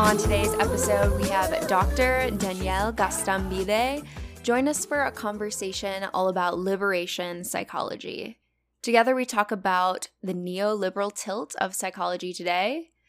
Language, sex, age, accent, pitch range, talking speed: English, female, 10-29, American, 175-220 Hz, 125 wpm